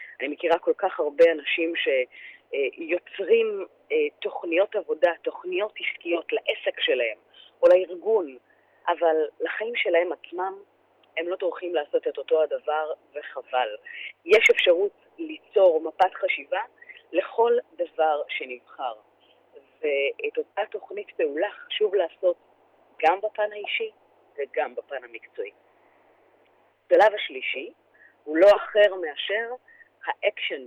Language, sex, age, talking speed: Hebrew, female, 30-49, 105 wpm